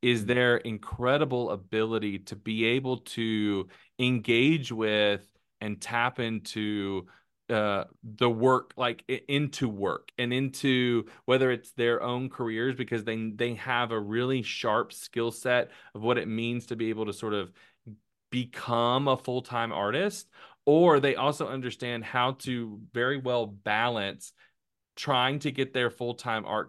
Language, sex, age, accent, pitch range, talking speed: English, male, 30-49, American, 110-130 Hz, 145 wpm